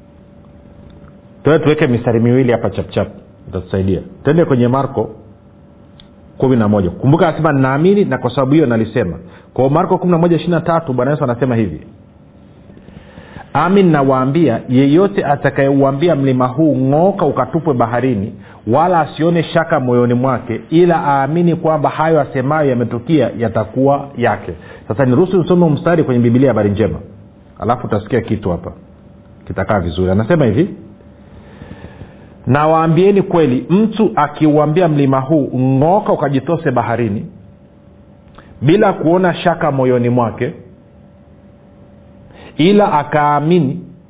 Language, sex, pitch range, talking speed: Swahili, male, 115-155 Hz, 110 wpm